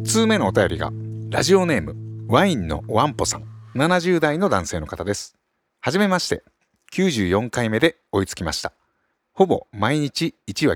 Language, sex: Japanese, male